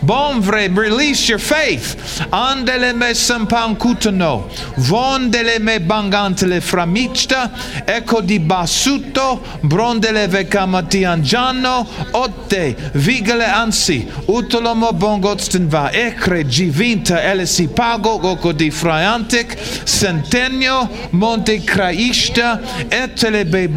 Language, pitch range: English, 160-220 Hz